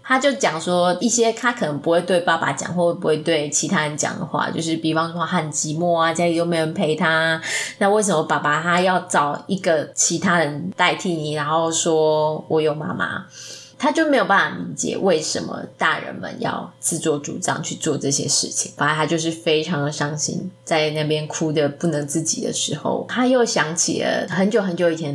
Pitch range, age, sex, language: 155-185 Hz, 20-39, female, Chinese